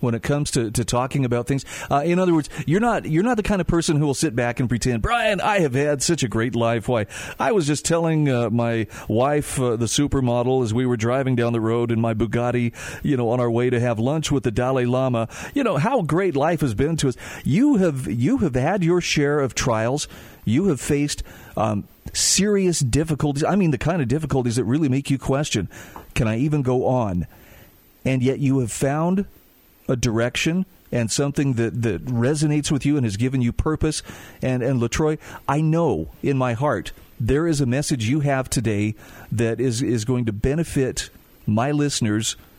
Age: 40-59